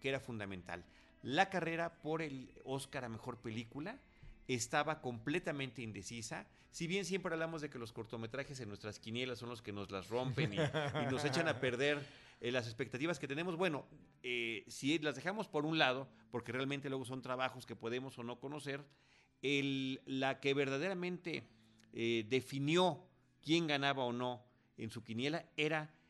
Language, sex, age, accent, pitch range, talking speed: Spanish, male, 40-59, Mexican, 115-155 Hz, 170 wpm